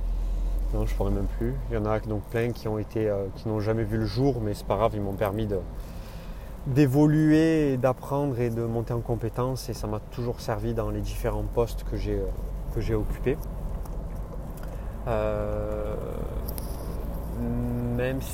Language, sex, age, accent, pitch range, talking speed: French, male, 30-49, French, 105-120 Hz, 175 wpm